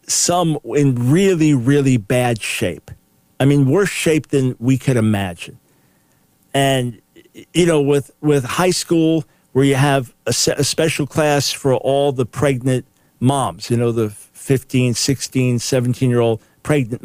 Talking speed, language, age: 150 wpm, English, 50-69